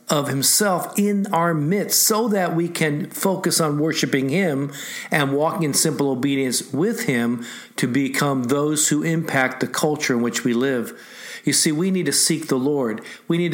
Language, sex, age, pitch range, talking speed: English, male, 50-69, 125-165 Hz, 180 wpm